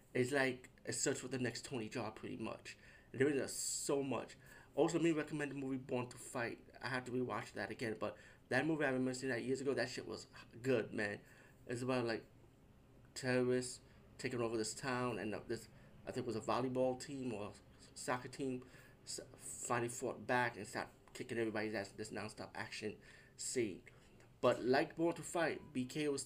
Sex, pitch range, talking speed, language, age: male, 115-130 Hz, 190 wpm, English, 30-49